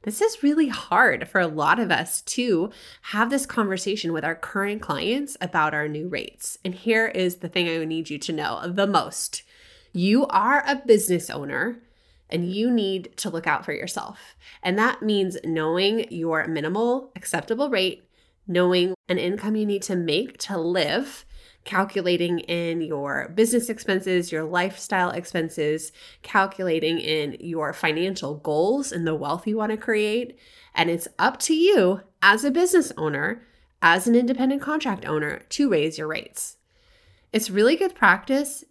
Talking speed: 165 wpm